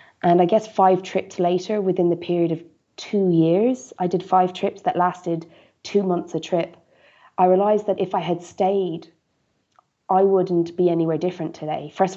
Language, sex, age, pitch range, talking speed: English, female, 20-39, 160-185 Hz, 180 wpm